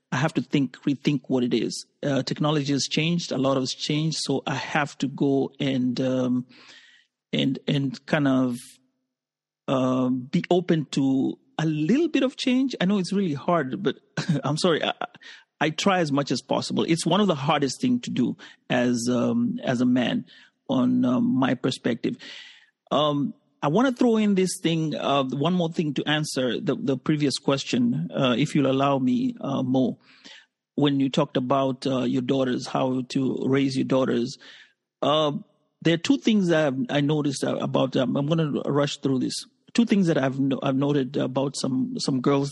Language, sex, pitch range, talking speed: English, male, 135-170 Hz, 185 wpm